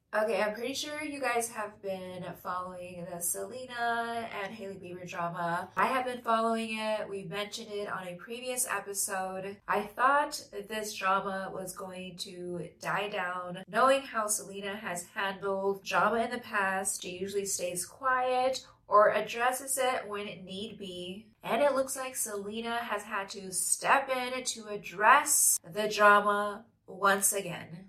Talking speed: 155 wpm